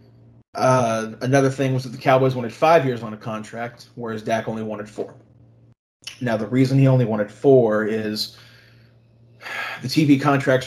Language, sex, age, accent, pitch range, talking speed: English, male, 30-49, American, 110-130 Hz, 165 wpm